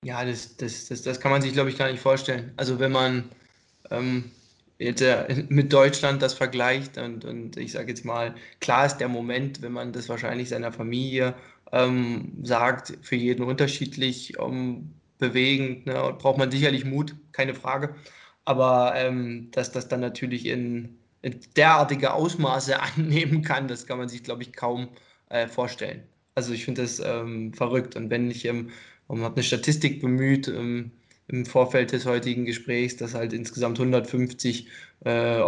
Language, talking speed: German, 170 wpm